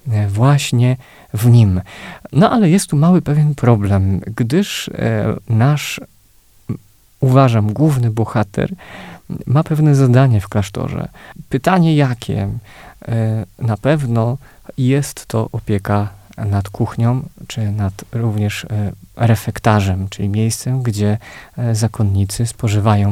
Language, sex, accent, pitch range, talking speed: Polish, male, native, 105-130 Hz, 100 wpm